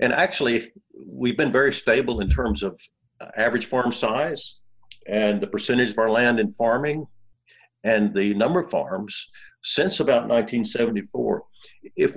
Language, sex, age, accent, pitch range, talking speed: English, male, 60-79, American, 115-140 Hz, 145 wpm